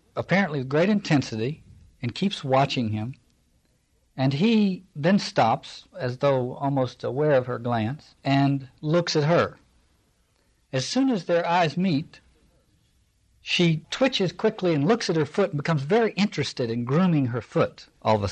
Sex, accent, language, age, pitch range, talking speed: male, American, English, 60-79, 115-160 Hz, 155 wpm